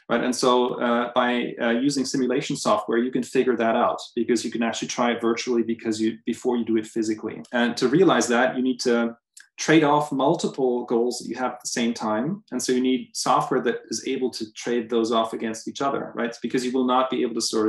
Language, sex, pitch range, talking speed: English, male, 110-125 Hz, 235 wpm